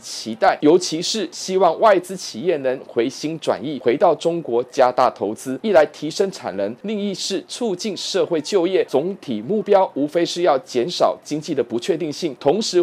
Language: Chinese